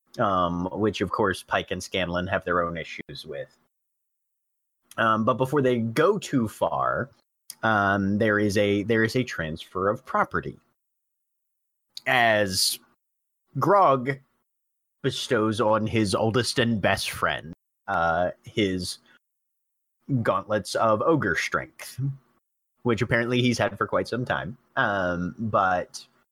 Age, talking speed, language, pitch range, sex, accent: 30-49, 125 wpm, English, 90-115 Hz, male, American